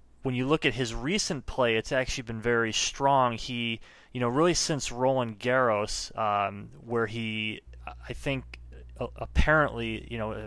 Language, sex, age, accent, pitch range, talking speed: English, male, 20-39, American, 100-125 Hz, 160 wpm